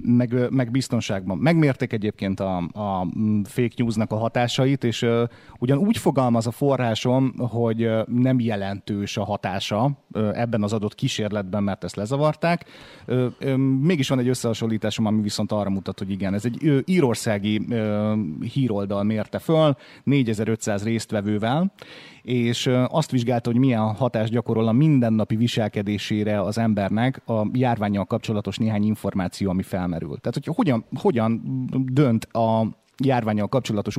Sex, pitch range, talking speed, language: male, 110-125 Hz, 145 wpm, Hungarian